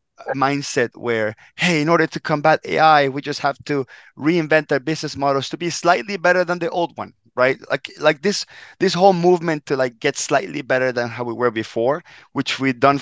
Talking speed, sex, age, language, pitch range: 205 wpm, male, 30-49, English, 120-155 Hz